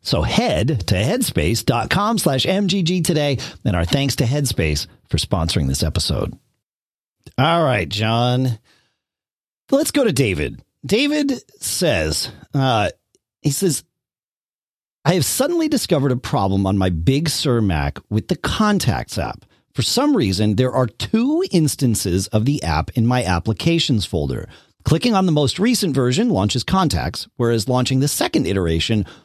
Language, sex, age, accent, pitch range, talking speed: English, male, 40-59, American, 100-165 Hz, 145 wpm